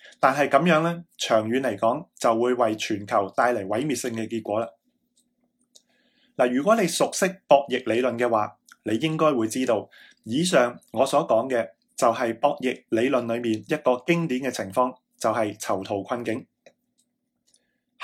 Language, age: Chinese, 20-39